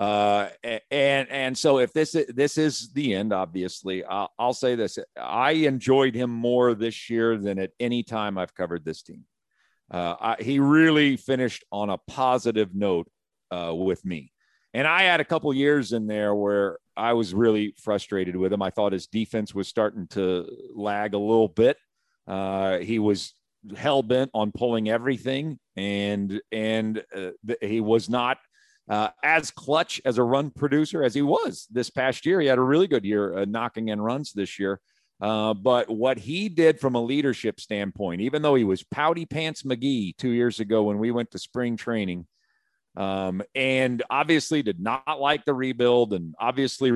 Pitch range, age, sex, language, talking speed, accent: 105-135 Hz, 50-69, male, English, 180 wpm, American